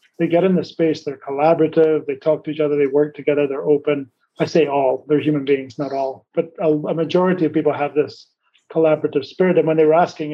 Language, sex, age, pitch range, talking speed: English, male, 30-49, 145-160 Hz, 230 wpm